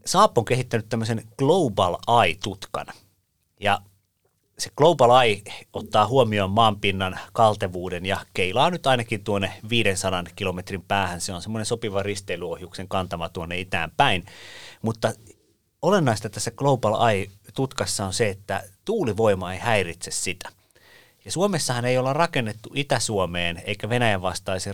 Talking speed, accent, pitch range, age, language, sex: 125 wpm, native, 95-120 Hz, 30-49, Finnish, male